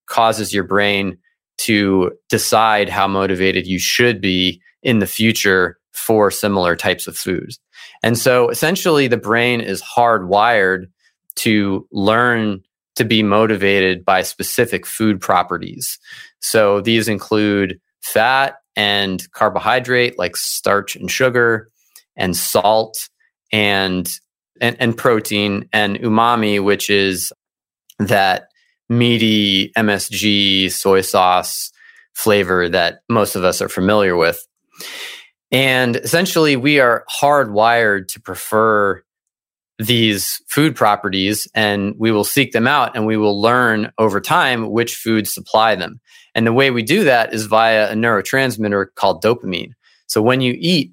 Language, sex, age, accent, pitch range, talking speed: English, male, 20-39, American, 100-120 Hz, 130 wpm